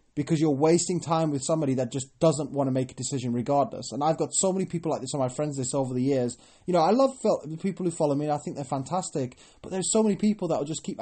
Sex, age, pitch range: male, 20-39, 130-175 Hz